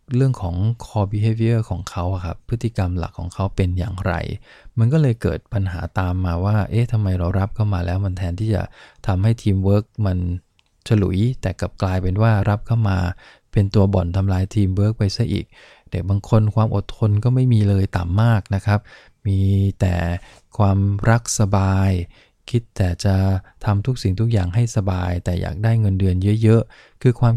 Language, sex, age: English, male, 20-39